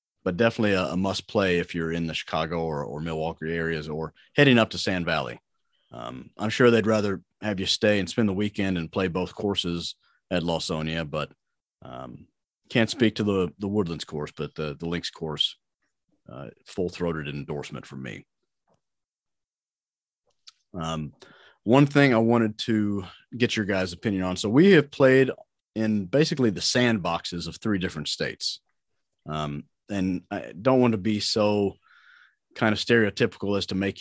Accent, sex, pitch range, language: American, male, 85-110 Hz, English